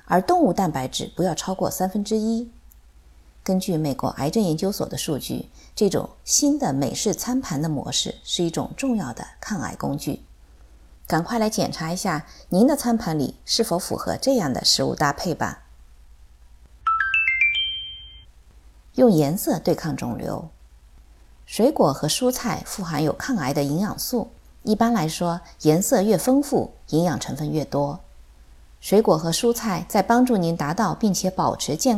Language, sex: Chinese, female